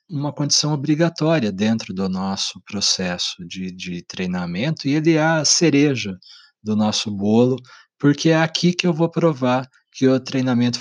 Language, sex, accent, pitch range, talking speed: Portuguese, male, Brazilian, 110-150 Hz, 155 wpm